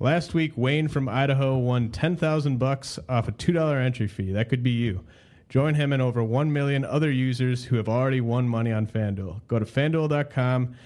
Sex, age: male, 30-49